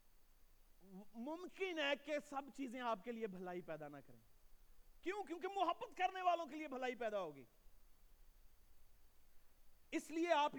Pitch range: 185-300 Hz